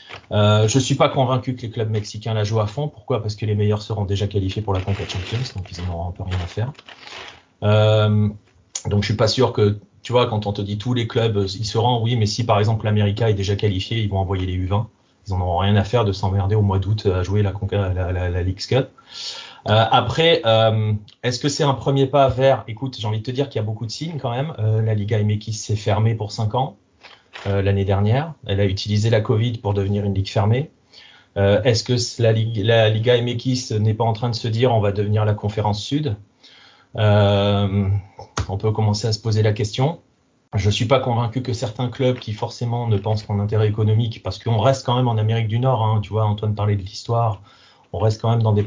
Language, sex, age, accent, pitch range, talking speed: French, male, 30-49, French, 100-120 Hz, 245 wpm